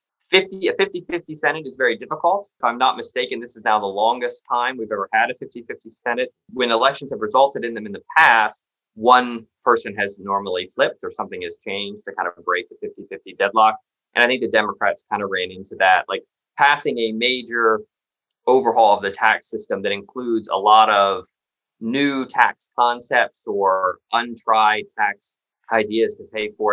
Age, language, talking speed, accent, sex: 20-39, English, 180 wpm, American, male